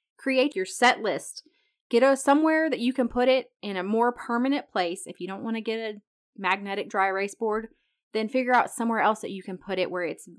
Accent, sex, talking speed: American, female, 225 wpm